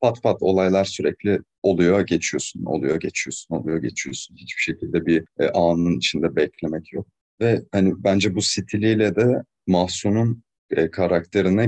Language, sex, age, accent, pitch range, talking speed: Turkish, male, 40-59, native, 90-120 Hz, 130 wpm